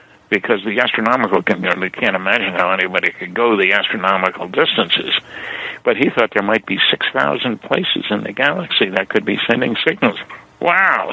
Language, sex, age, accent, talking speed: English, male, 60-79, American, 160 wpm